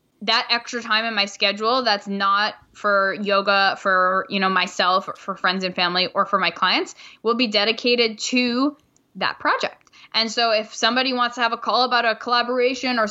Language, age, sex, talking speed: English, 10-29, female, 190 wpm